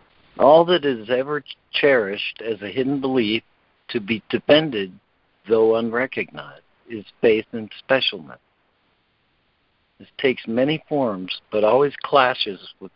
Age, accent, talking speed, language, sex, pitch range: 60-79, American, 120 wpm, English, male, 110-135 Hz